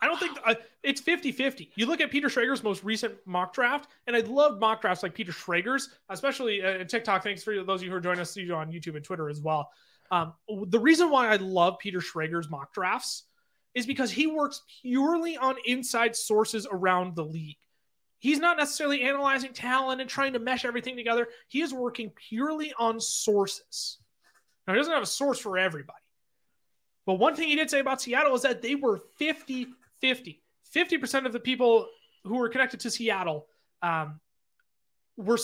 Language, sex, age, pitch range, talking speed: English, male, 30-49, 190-265 Hz, 200 wpm